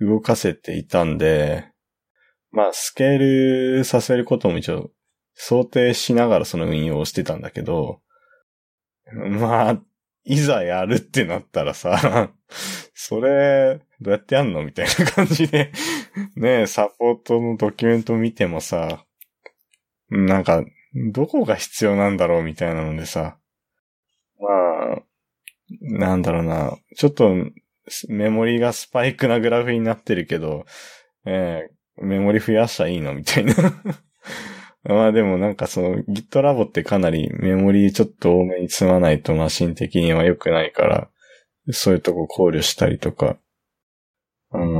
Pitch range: 95-130 Hz